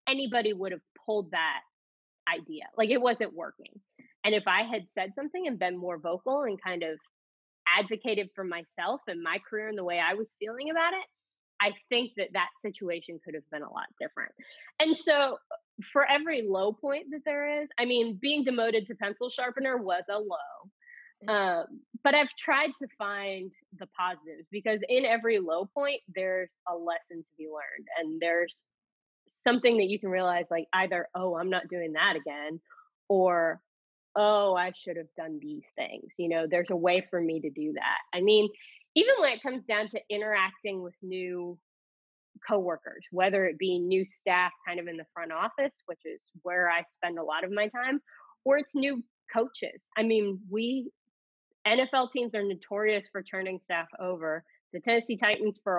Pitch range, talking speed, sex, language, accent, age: 180-260 Hz, 185 wpm, female, English, American, 20-39